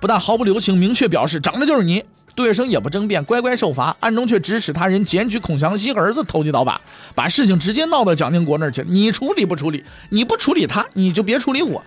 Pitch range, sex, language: 150-220 Hz, male, Chinese